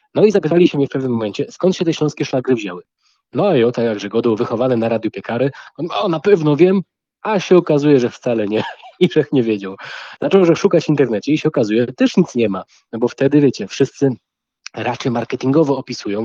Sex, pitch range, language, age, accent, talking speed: male, 120-160 Hz, Polish, 20-39, native, 220 wpm